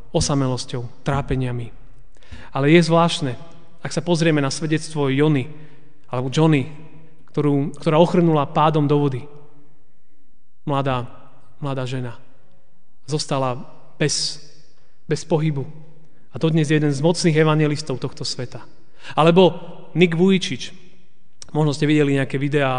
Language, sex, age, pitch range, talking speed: Slovak, male, 30-49, 135-165 Hz, 110 wpm